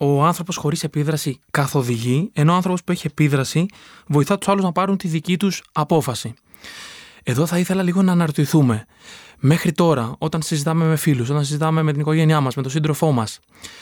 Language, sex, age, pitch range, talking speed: Greek, male, 20-39, 140-175 Hz, 180 wpm